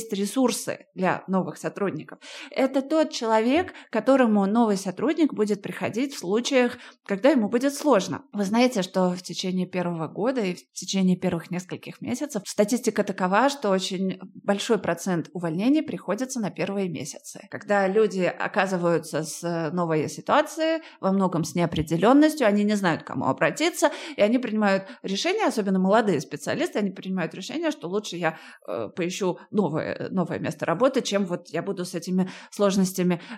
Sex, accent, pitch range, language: female, native, 185-245 Hz, Russian